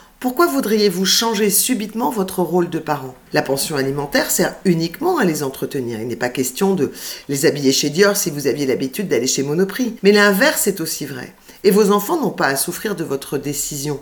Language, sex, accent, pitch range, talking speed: French, female, French, 160-210 Hz, 200 wpm